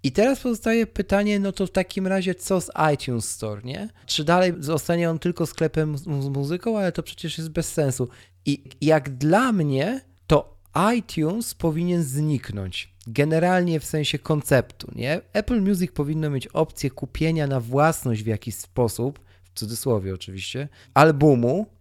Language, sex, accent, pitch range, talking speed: Polish, male, native, 125-160 Hz, 155 wpm